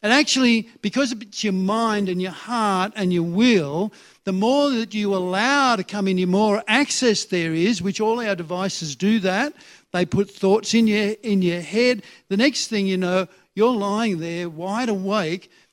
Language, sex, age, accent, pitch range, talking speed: English, male, 60-79, Australian, 170-215 Hz, 185 wpm